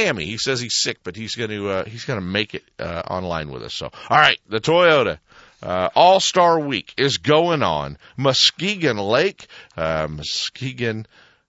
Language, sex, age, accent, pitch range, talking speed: English, male, 50-69, American, 95-135 Hz, 180 wpm